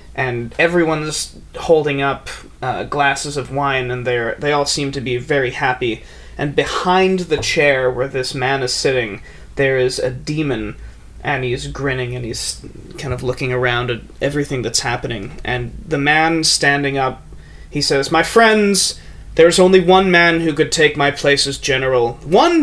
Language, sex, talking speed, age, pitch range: English, male, 165 wpm, 30-49, 130-160 Hz